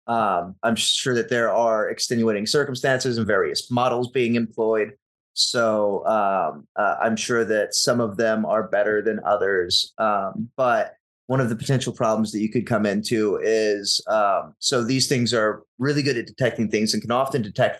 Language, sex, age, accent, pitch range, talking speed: English, male, 20-39, American, 105-130 Hz, 180 wpm